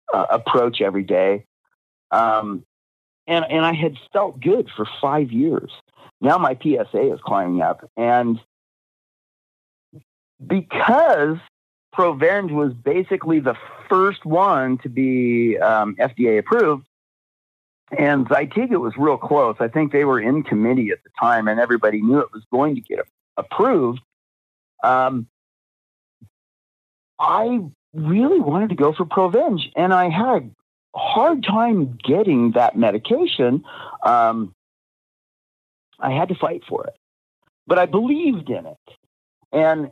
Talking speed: 130 wpm